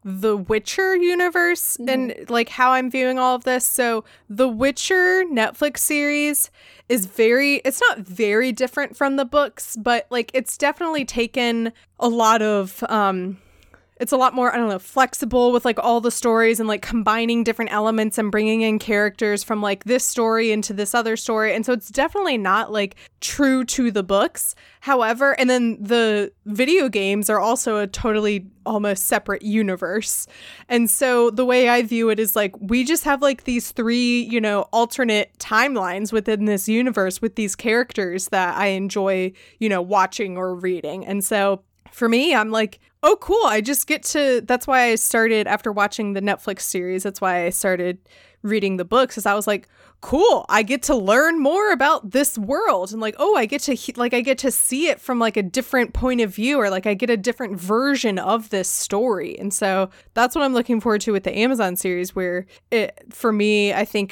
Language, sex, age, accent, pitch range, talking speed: English, female, 20-39, American, 205-255 Hz, 195 wpm